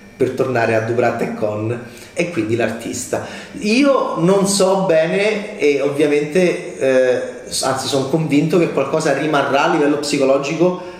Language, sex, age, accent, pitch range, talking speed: Italian, male, 30-49, native, 125-160 Hz, 135 wpm